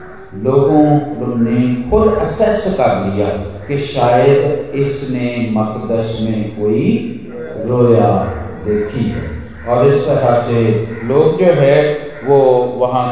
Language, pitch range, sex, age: Hindi, 120-155 Hz, male, 50-69